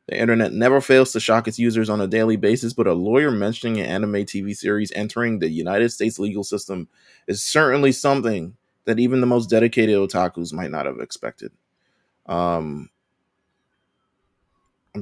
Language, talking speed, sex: English, 160 wpm, male